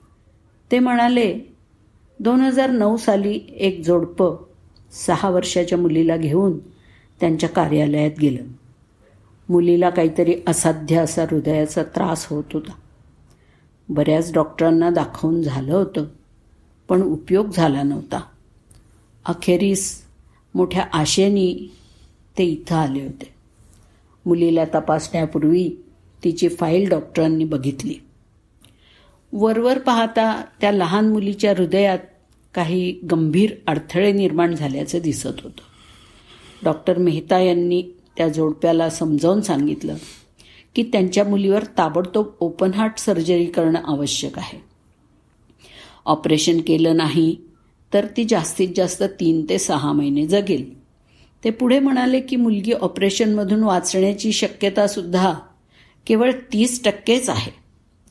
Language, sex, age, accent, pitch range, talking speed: Marathi, female, 50-69, native, 155-200 Hz, 100 wpm